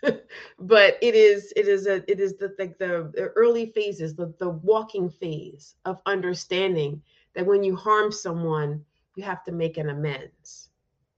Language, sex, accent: English, female, American